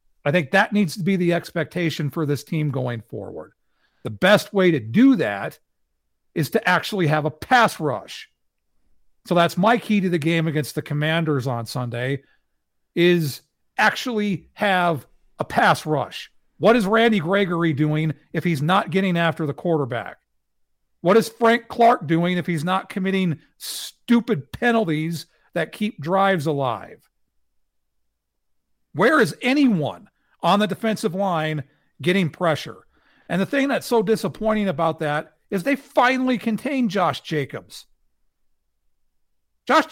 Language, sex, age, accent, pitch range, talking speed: English, male, 50-69, American, 145-210 Hz, 145 wpm